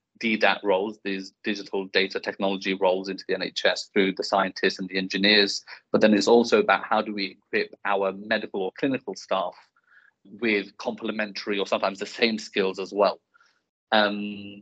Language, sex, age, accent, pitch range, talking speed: English, male, 30-49, British, 100-115 Hz, 165 wpm